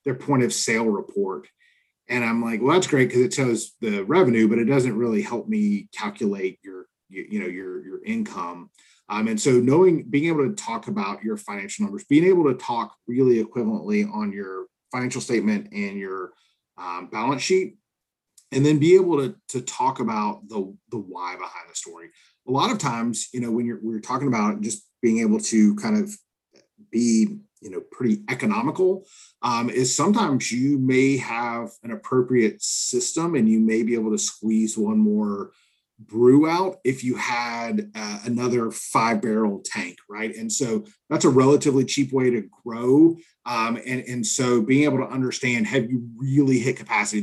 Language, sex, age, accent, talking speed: English, male, 30-49, American, 185 wpm